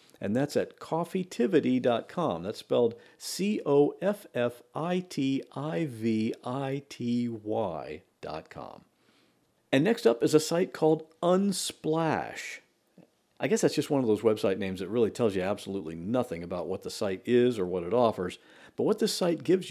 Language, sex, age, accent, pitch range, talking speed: English, male, 50-69, American, 120-180 Hz, 135 wpm